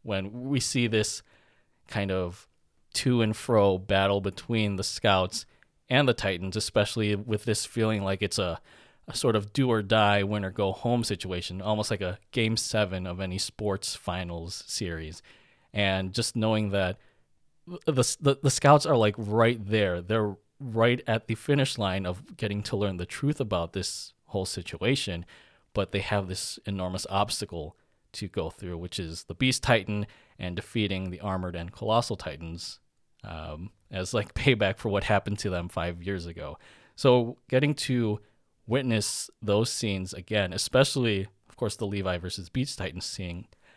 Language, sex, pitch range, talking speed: English, male, 95-115 Hz, 155 wpm